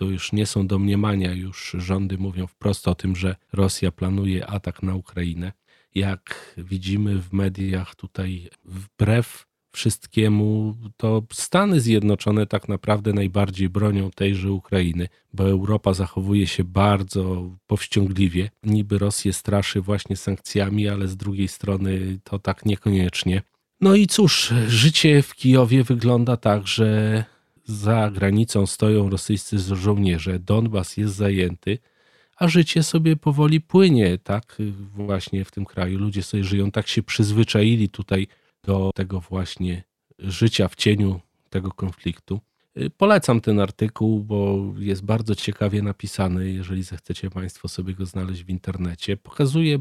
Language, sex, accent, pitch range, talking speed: Polish, male, native, 95-110 Hz, 135 wpm